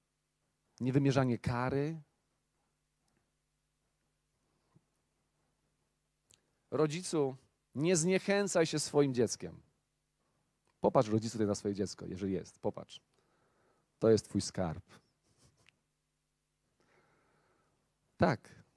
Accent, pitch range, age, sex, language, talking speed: native, 115-165 Hz, 40-59, male, Polish, 70 wpm